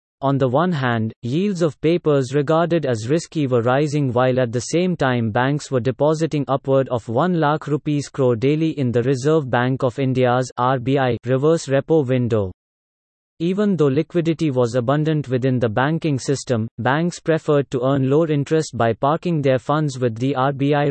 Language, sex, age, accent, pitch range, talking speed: English, male, 30-49, Indian, 130-155 Hz, 170 wpm